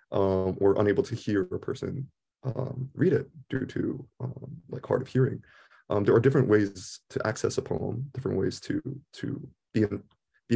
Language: English